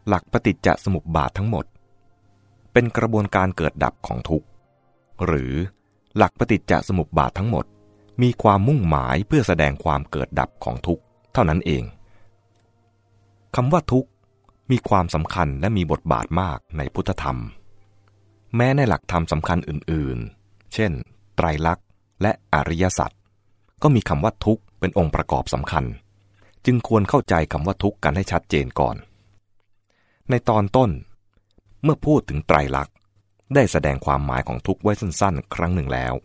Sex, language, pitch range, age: male, English, 80-105 Hz, 30-49